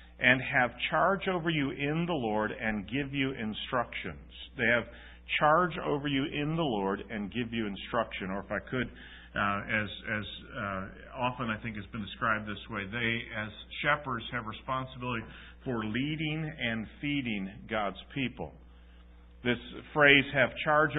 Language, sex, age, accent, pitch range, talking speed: English, male, 50-69, American, 110-140 Hz, 155 wpm